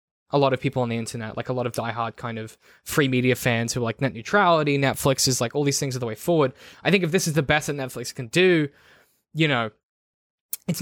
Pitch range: 125-155 Hz